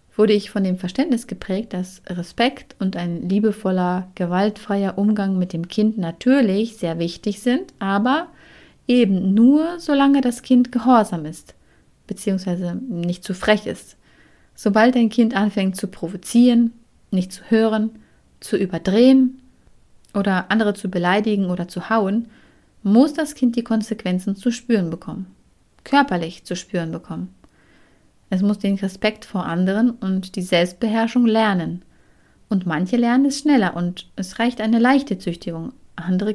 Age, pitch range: 30-49, 180-235 Hz